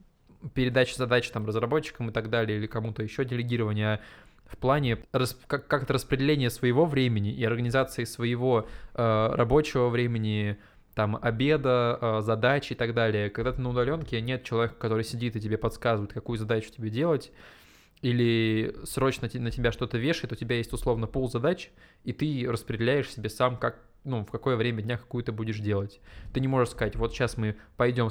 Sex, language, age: male, Russian, 20-39